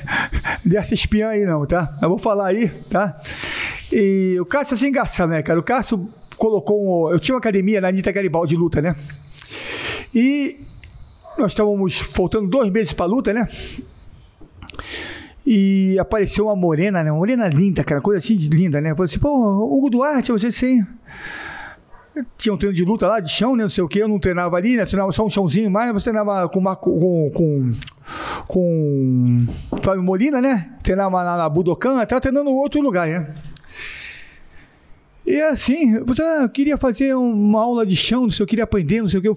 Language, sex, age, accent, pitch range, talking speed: Portuguese, male, 50-69, Brazilian, 185-235 Hz, 190 wpm